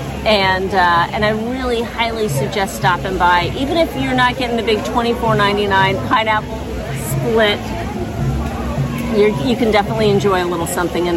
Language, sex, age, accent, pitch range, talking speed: English, female, 40-59, American, 175-230 Hz, 150 wpm